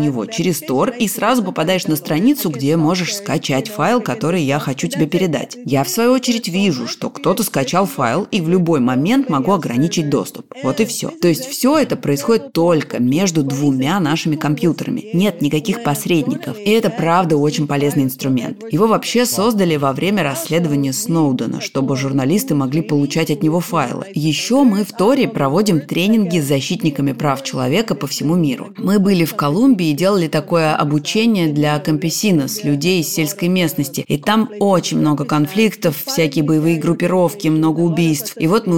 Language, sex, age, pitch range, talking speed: Russian, female, 20-39, 150-195 Hz, 170 wpm